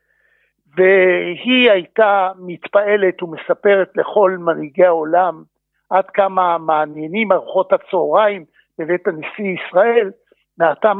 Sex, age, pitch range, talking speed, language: male, 60-79, 170-205 Hz, 85 wpm, Hebrew